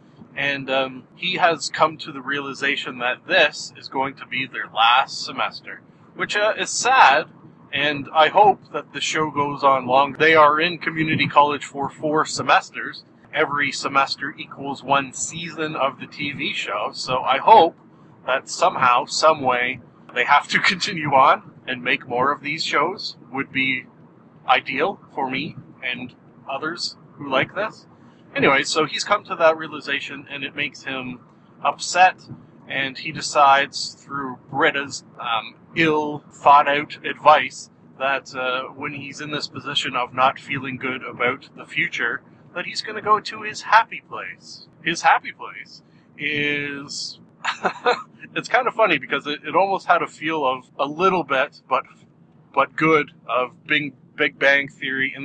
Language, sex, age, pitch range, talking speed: English, male, 30-49, 135-155 Hz, 160 wpm